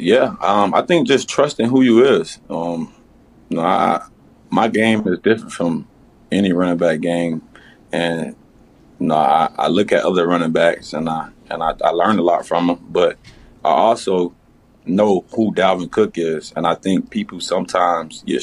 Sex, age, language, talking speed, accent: male, 30-49, English, 185 wpm, American